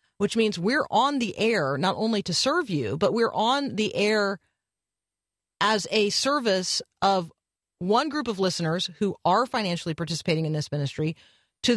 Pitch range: 165-210 Hz